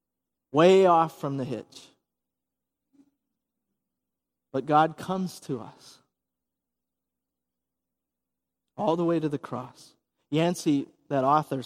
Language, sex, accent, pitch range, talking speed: English, male, American, 130-160 Hz, 100 wpm